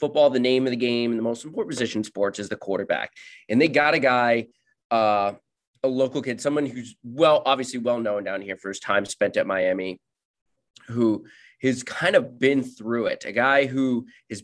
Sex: male